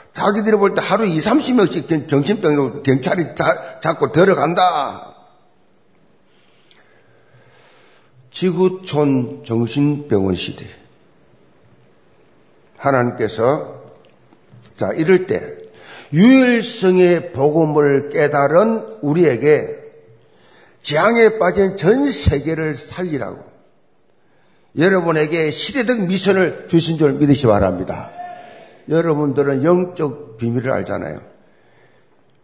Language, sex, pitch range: Korean, male, 145-205 Hz